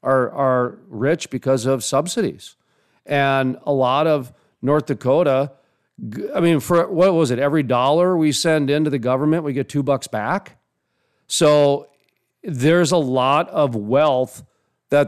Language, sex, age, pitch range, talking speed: English, male, 40-59, 130-160 Hz, 145 wpm